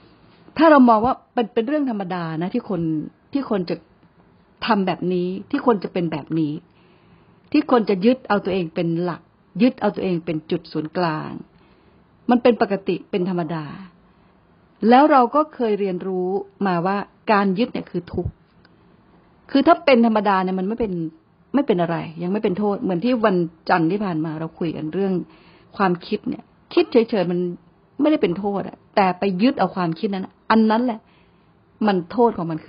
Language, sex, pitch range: Thai, female, 170-220 Hz